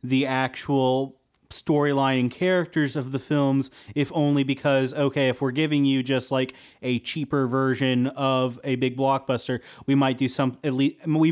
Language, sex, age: English, male, 30-49